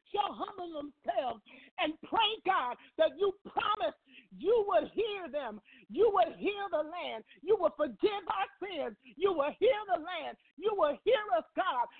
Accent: American